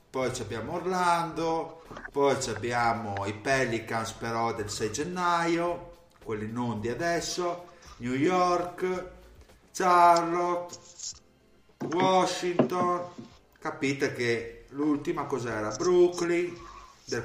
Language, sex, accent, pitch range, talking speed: Italian, male, native, 115-170 Hz, 85 wpm